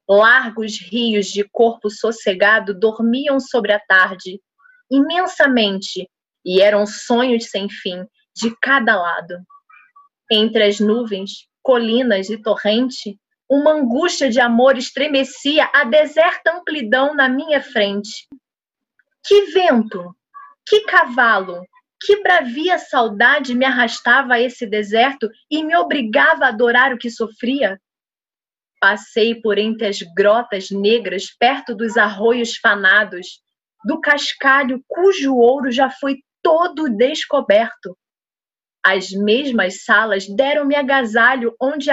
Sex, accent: female, Brazilian